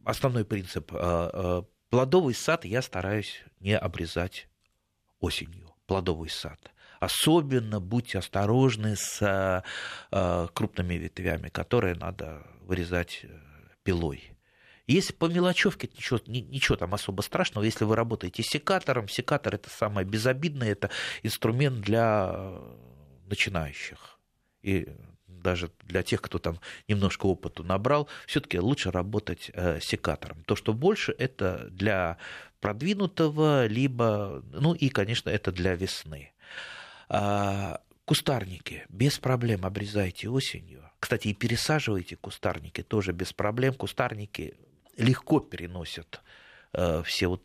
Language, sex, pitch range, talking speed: Russian, male, 90-120 Hz, 105 wpm